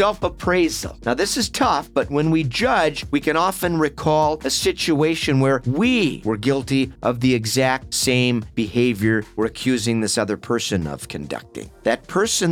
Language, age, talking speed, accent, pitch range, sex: English, 40-59, 160 wpm, American, 115-150 Hz, male